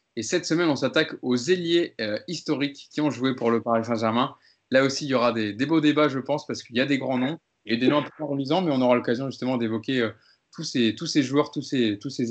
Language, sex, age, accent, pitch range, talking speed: French, male, 20-39, French, 115-145 Hz, 270 wpm